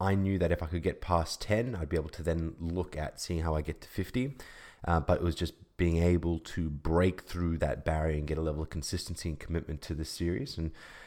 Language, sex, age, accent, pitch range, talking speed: English, male, 20-39, Australian, 80-90 Hz, 250 wpm